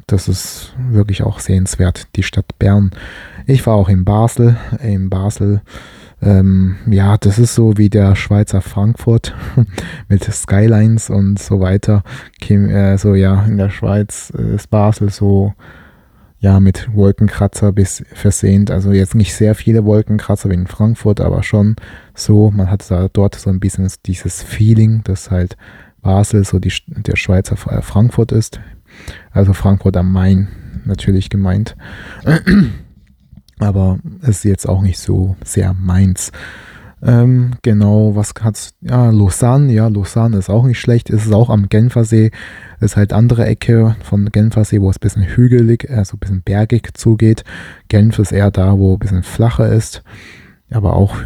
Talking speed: 155 wpm